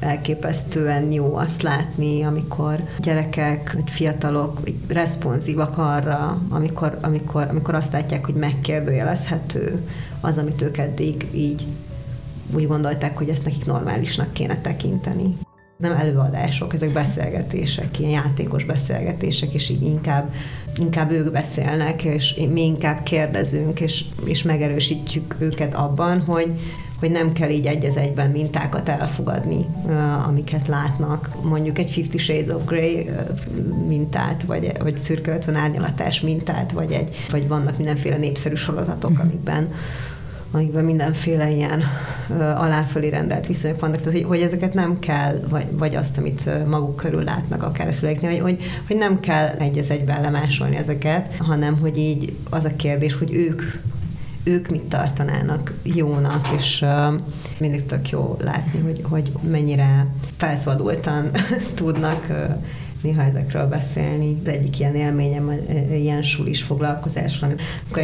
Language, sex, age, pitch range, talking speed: Hungarian, female, 30-49, 145-160 Hz, 135 wpm